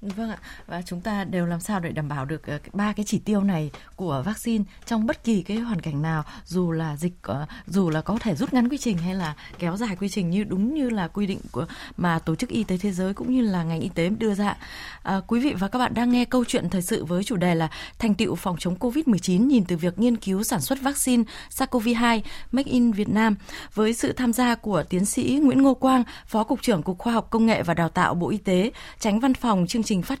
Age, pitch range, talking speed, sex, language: 20-39, 190-240 Hz, 265 wpm, female, Vietnamese